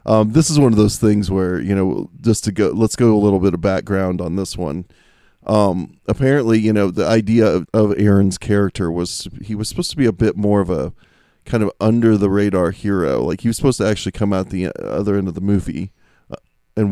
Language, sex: English, male